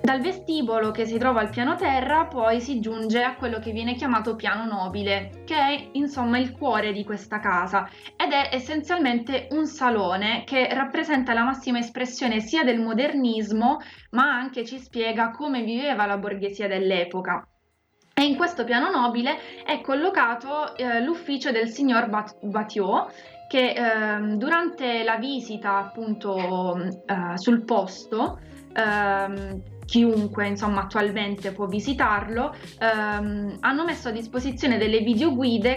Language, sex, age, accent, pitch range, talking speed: Italian, female, 20-39, native, 210-265 Hz, 140 wpm